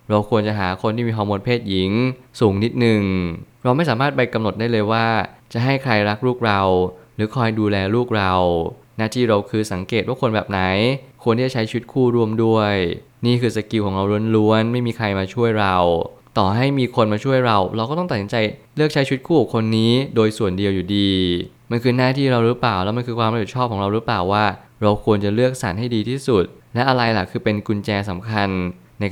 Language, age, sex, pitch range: Thai, 20-39, male, 105-120 Hz